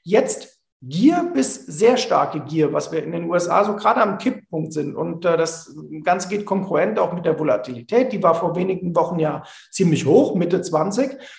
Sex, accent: male, German